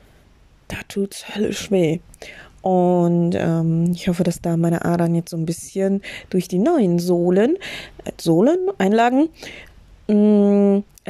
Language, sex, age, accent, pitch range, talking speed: German, female, 20-39, German, 175-220 Hz, 125 wpm